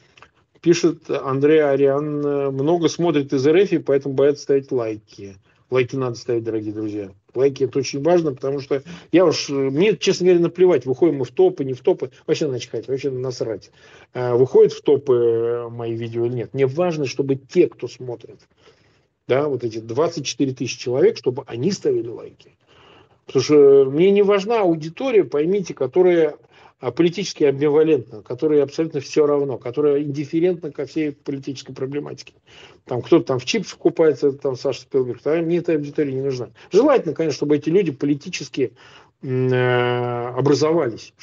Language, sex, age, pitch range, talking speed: Russian, male, 40-59, 130-170 Hz, 155 wpm